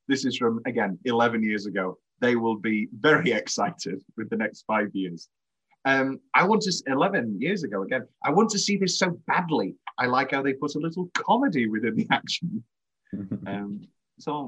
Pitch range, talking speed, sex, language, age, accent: 115-170 Hz, 190 wpm, male, English, 30-49, British